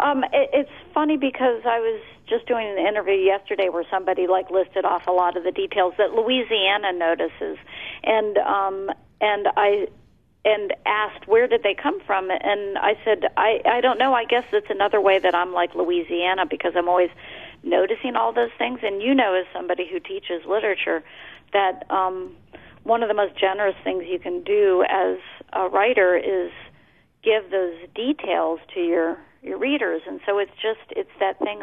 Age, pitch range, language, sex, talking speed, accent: 40-59, 185-230 Hz, English, female, 180 wpm, American